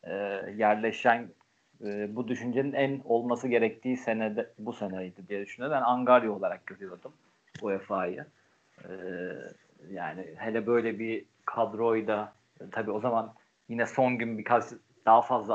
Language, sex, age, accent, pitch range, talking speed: Turkish, male, 40-59, native, 105-130 Hz, 125 wpm